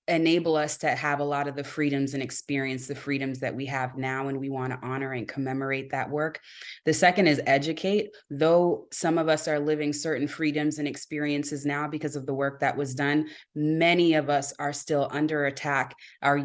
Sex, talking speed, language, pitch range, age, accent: female, 205 wpm, English, 140-160 Hz, 20-39, American